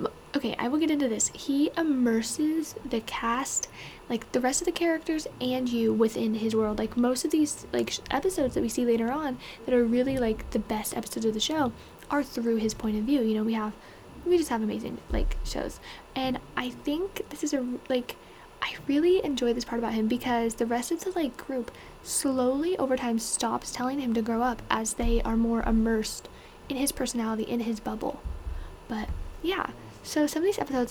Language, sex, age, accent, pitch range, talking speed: English, female, 10-29, American, 230-290 Hz, 205 wpm